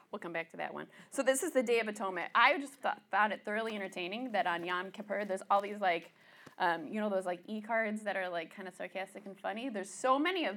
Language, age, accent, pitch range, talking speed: English, 20-39, American, 180-225 Hz, 255 wpm